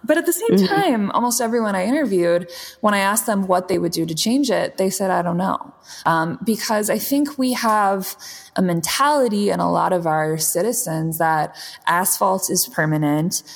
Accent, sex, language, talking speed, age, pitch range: American, female, English, 190 wpm, 20-39, 155-215 Hz